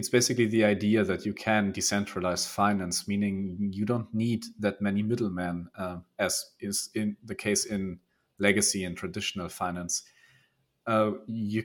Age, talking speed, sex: 40-59, 150 wpm, male